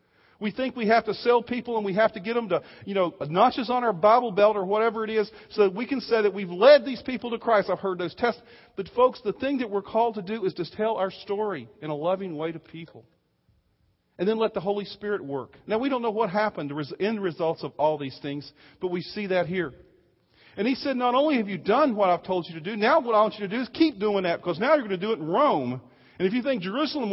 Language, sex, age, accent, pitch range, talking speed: English, male, 50-69, American, 165-230 Hz, 275 wpm